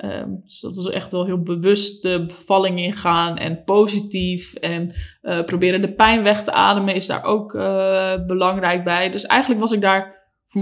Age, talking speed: 20-39, 185 wpm